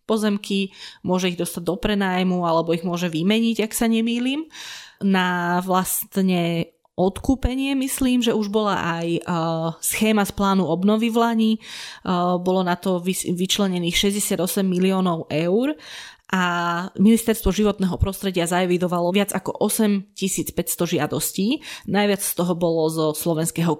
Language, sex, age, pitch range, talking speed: Slovak, female, 20-39, 175-215 Hz, 125 wpm